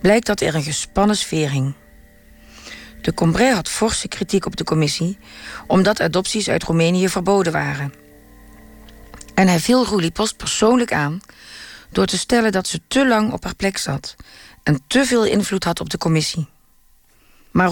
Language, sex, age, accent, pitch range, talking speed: Dutch, female, 40-59, Dutch, 155-205 Hz, 165 wpm